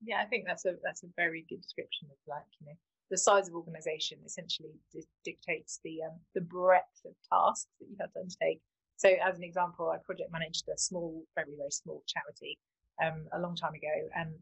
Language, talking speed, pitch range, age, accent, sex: English, 210 wpm, 160-200 Hz, 30-49, British, female